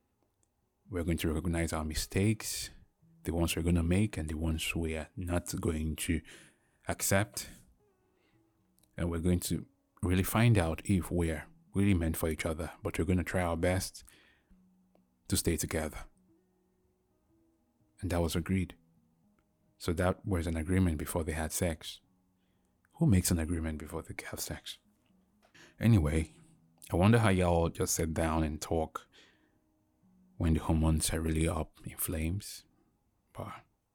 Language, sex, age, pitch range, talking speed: English, male, 30-49, 80-100 Hz, 150 wpm